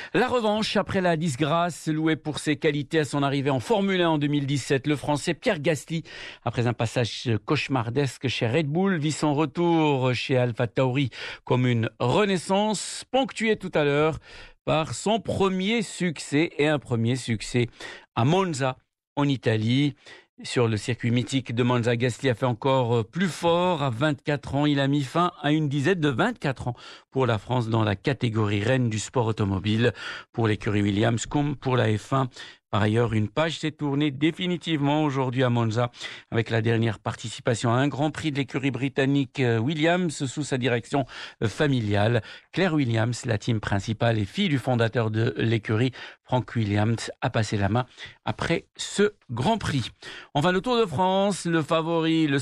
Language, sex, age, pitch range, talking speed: Arabic, male, 50-69, 115-155 Hz, 170 wpm